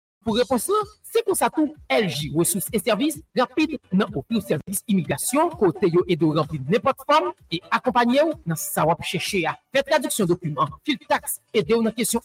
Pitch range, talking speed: 190-280 Hz, 240 wpm